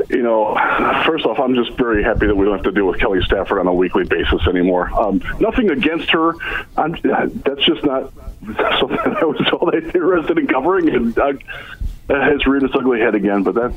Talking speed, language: 210 wpm, English